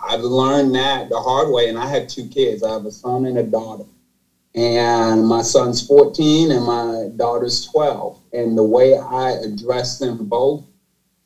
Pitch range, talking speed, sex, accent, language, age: 110-145 Hz, 175 wpm, male, American, English, 30-49